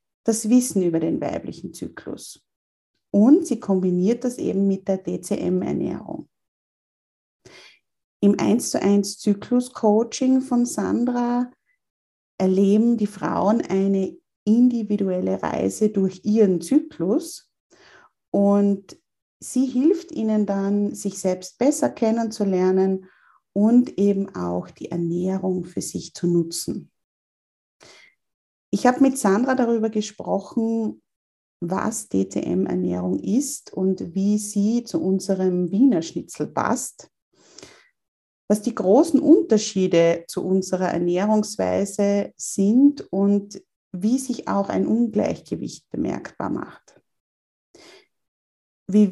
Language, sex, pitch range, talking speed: German, female, 185-240 Hz, 100 wpm